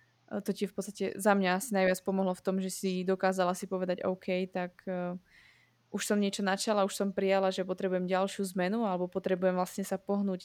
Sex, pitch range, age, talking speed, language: female, 185-200 Hz, 20-39, 195 wpm, Slovak